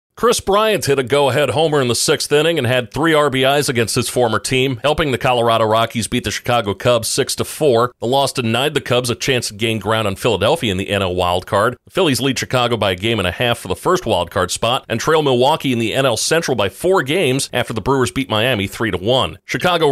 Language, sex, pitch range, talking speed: English, male, 110-135 Hz, 230 wpm